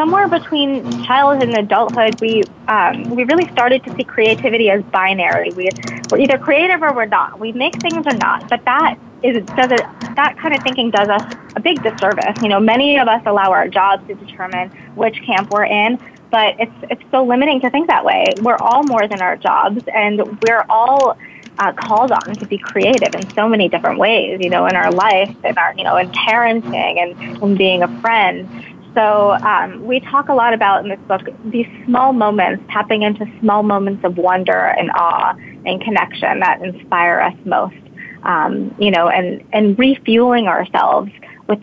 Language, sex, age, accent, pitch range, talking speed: English, female, 20-39, American, 200-250 Hz, 195 wpm